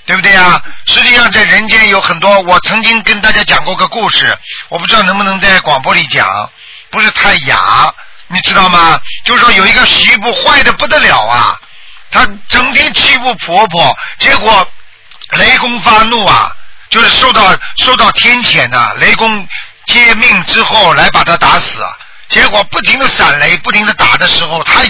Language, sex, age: Chinese, male, 50-69